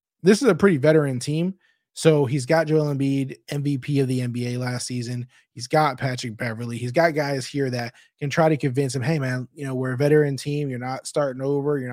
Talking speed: 220 wpm